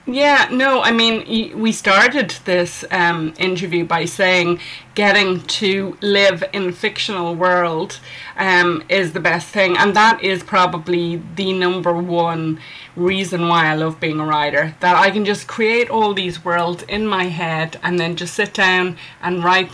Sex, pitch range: female, 170-195 Hz